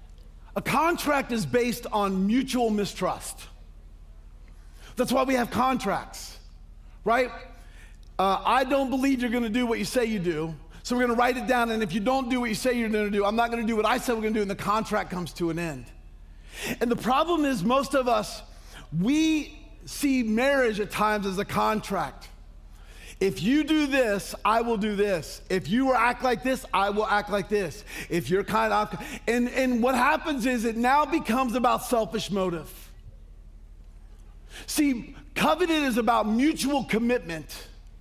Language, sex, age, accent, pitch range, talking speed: English, male, 50-69, American, 160-250 Hz, 190 wpm